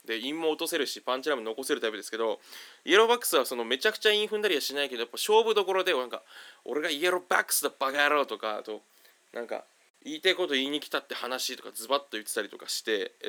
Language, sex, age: Japanese, male, 20-39